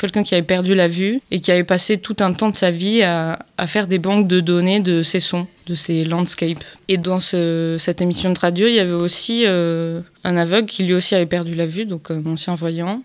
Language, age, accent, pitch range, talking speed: French, 20-39, French, 170-190 Hz, 255 wpm